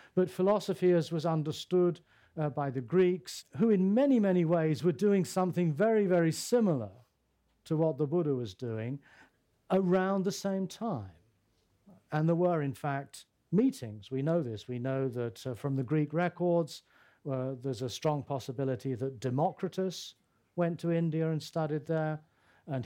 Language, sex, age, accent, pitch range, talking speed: English, male, 40-59, British, 130-170 Hz, 160 wpm